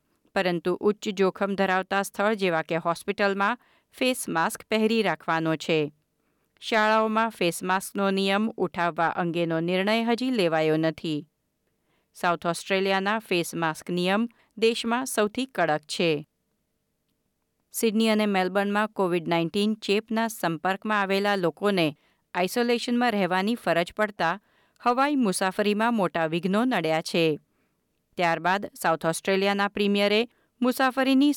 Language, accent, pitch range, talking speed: Gujarati, native, 175-225 Hz, 100 wpm